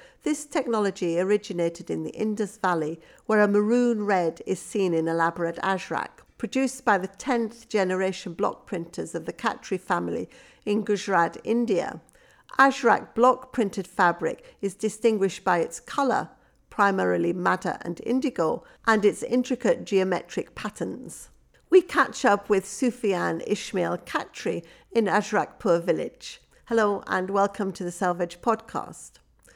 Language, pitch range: English, 180-240 Hz